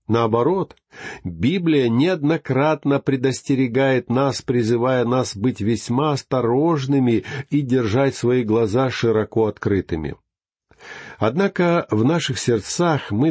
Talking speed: 95 wpm